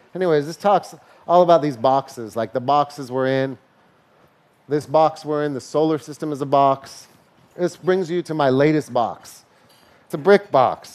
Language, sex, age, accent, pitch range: Japanese, male, 30-49, American, 150-205 Hz